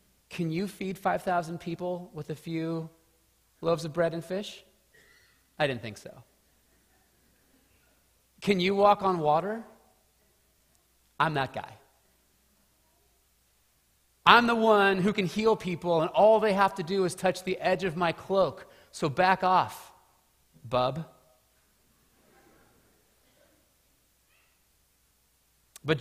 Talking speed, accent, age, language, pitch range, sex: 115 wpm, American, 30-49, English, 165-220 Hz, male